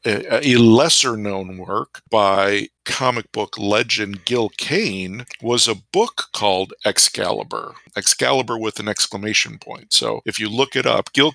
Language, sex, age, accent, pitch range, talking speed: English, male, 50-69, American, 100-120 Hz, 145 wpm